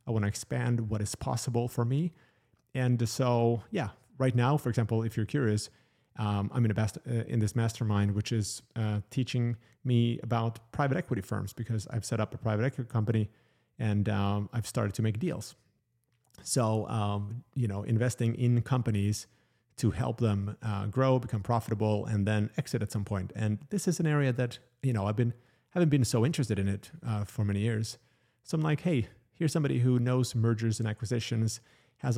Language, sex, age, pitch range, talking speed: English, male, 30-49, 105-125 Hz, 195 wpm